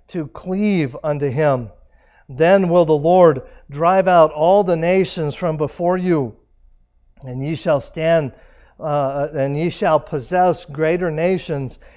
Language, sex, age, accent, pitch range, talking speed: English, male, 50-69, American, 130-165 Hz, 135 wpm